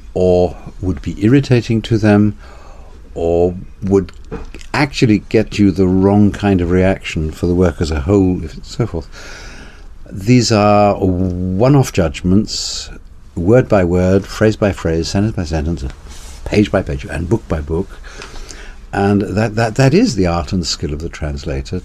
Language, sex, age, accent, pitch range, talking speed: English, male, 60-79, British, 75-105 Hz, 155 wpm